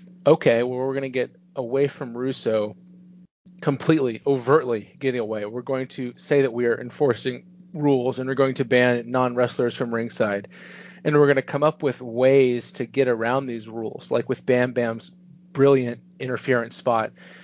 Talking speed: 170 wpm